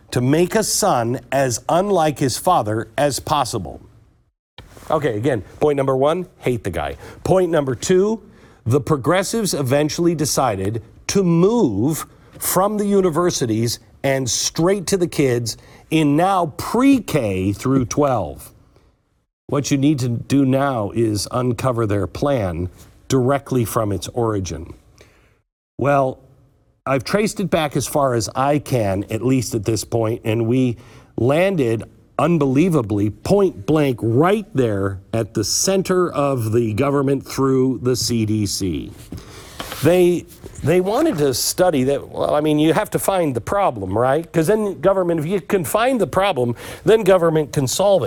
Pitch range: 115-165 Hz